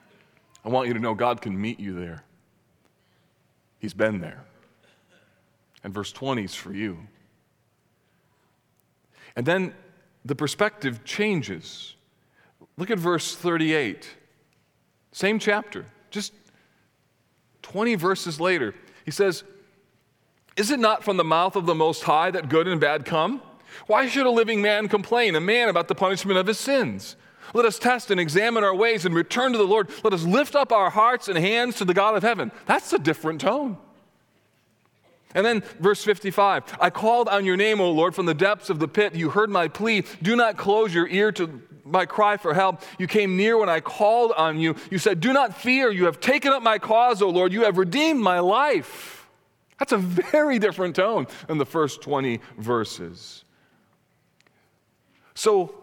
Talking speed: 175 wpm